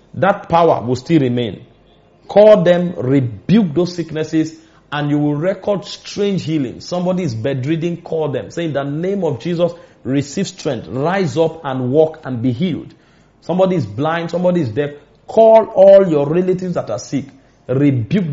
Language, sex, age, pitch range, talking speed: English, male, 30-49, 130-170 Hz, 165 wpm